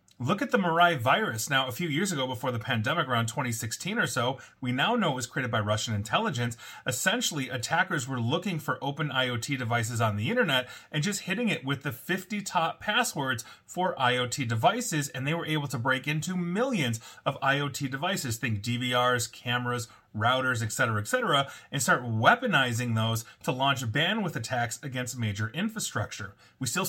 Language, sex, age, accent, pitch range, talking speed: English, male, 30-49, American, 125-175 Hz, 180 wpm